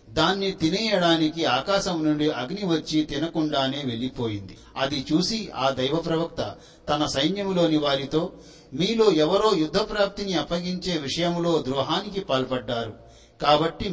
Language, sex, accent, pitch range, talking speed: Telugu, male, native, 135-170 Hz, 110 wpm